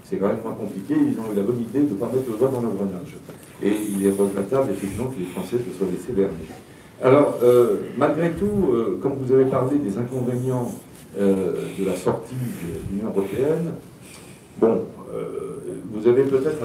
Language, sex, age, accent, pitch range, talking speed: French, male, 60-79, French, 100-145 Hz, 195 wpm